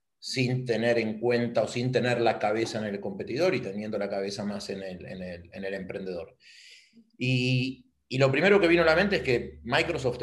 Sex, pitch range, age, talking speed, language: male, 110-130 Hz, 30-49, 210 wpm, Spanish